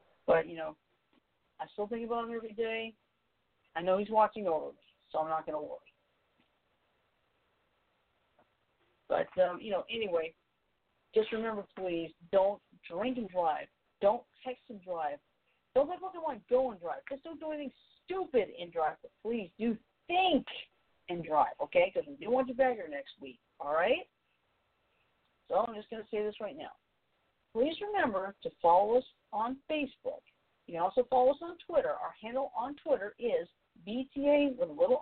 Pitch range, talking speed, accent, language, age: 195-280 Hz, 175 wpm, American, English, 40-59